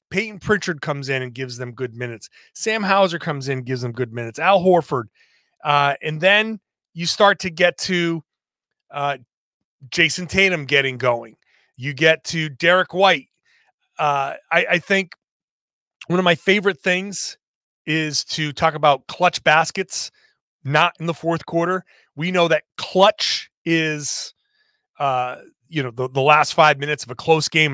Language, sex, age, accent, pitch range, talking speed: English, male, 30-49, American, 140-180 Hz, 160 wpm